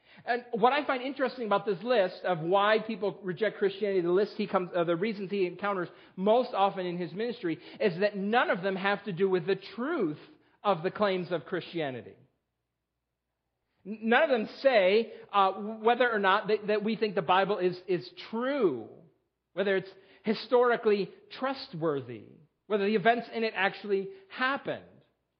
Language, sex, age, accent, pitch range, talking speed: English, male, 40-59, American, 180-220 Hz, 170 wpm